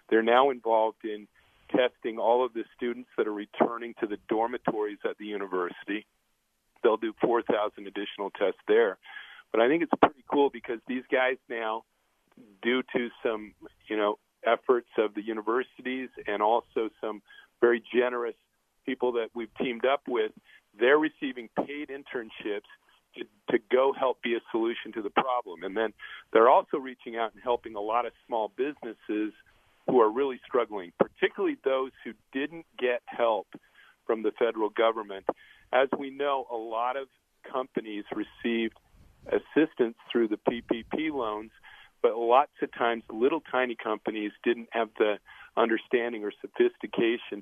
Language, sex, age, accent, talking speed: English, male, 50-69, American, 155 wpm